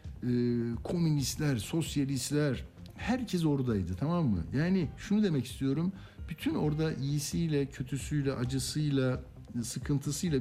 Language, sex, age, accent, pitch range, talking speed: Turkish, male, 60-79, native, 110-145 Hz, 90 wpm